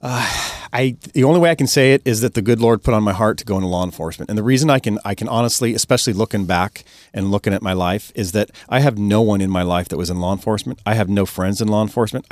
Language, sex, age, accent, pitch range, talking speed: English, male, 40-59, American, 95-120 Hz, 290 wpm